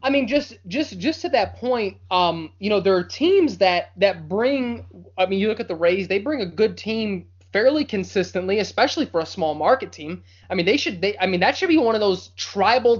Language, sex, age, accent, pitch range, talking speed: English, male, 20-39, American, 170-230 Hz, 240 wpm